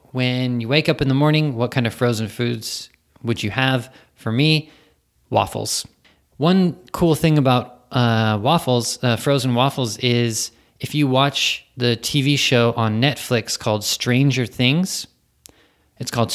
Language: Japanese